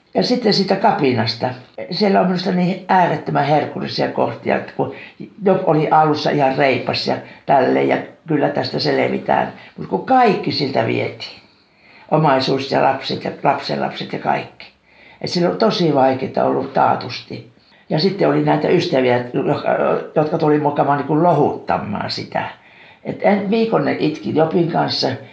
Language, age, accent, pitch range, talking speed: Finnish, 60-79, native, 125-180 Hz, 140 wpm